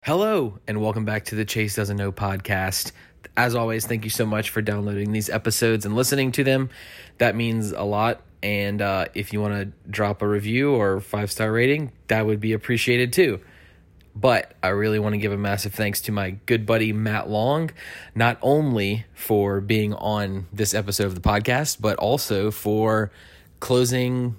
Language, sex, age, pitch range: English, male, 20-39, 100-120 Hz